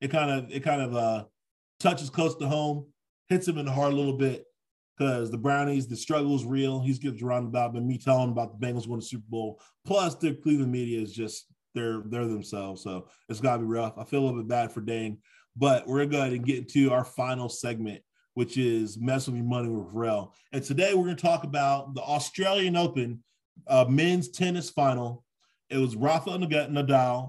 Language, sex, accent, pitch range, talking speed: English, male, American, 125-155 Hz, 215 wpm